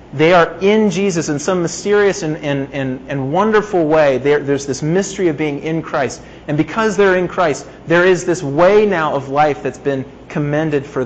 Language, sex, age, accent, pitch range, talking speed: English, male, 30-49, American, 130-175 Hz, 200 wpm